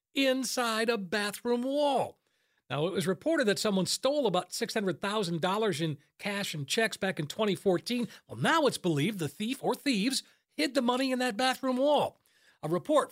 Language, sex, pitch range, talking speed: English, male, 190-255 Hz, 170 wpm